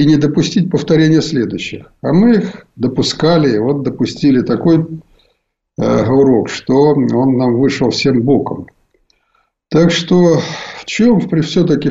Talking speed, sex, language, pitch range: 130 wpm, male, Russian, 125-165 Hz